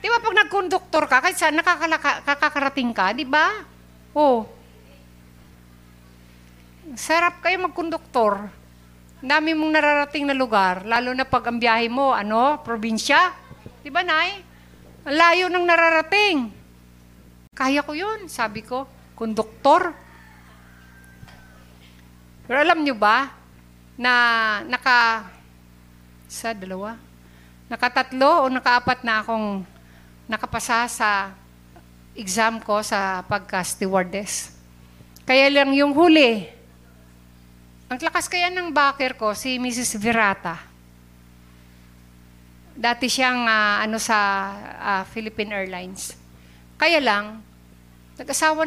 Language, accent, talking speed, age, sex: Filipino, native, 105 wpm, 50-69, female